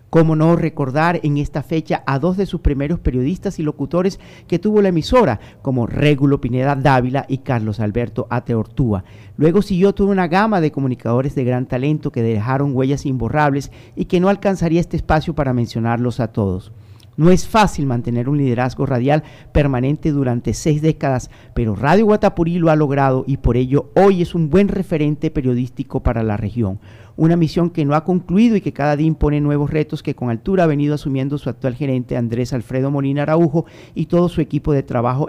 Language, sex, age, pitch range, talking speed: English, male, 50-69, 125-160 Hz, 190 wpm